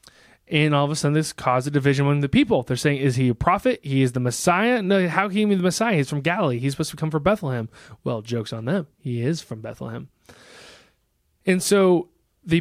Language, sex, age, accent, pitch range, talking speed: English, male, 20-39, American, 135-180 Hz, 235 wpm